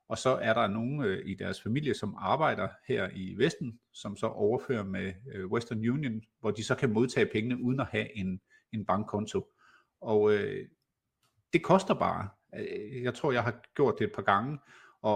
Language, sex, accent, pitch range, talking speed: Danish, male, native, 105-130 Hz, 190 wpm